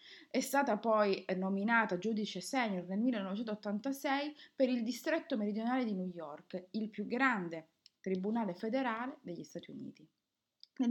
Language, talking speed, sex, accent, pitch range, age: Italian, 130 wpm, female, native, 185-245 Hz, 30-49